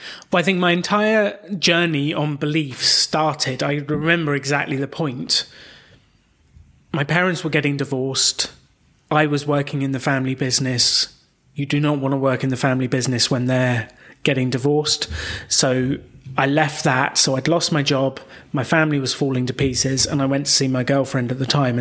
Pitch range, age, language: 130-155 Hz, 30-49, English